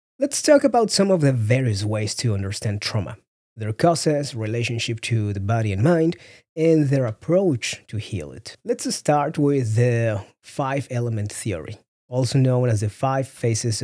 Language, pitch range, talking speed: English, 105-145 Hz, 165 wpm